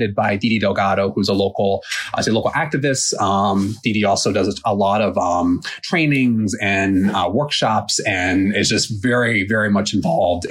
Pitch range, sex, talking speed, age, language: 100-120 Hz, male, 165 wpm, 30-49, English